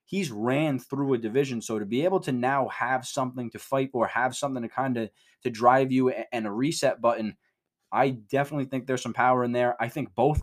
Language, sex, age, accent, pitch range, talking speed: English, male, 20-39, American, 120-145 Hz, 225 wpm